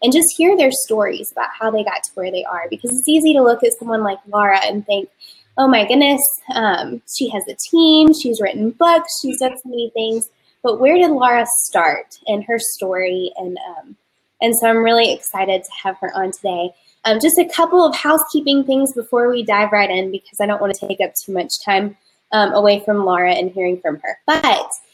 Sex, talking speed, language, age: female, 220 wpm, English, 10-29